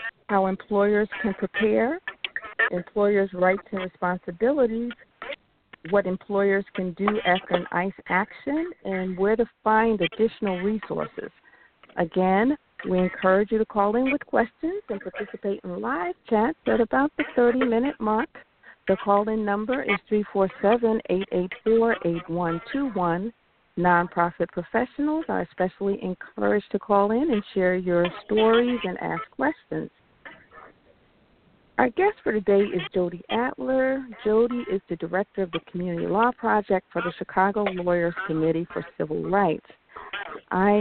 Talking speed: 125 wpm